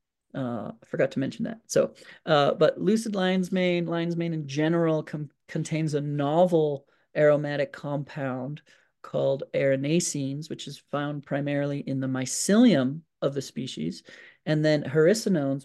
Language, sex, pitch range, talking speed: English, male, 135-165 Hz, 140 wpm